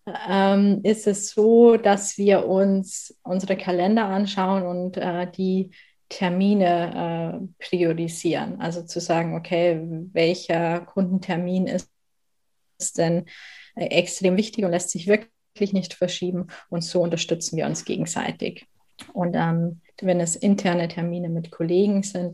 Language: German